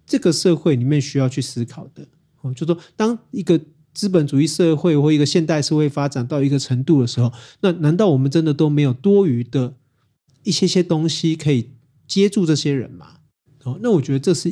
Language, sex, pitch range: Chinese, male, 135-165 Hz